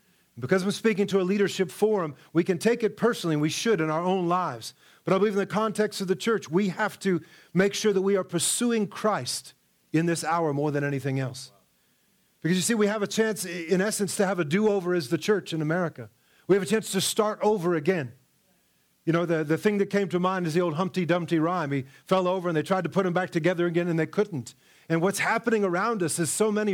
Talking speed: 245 wpm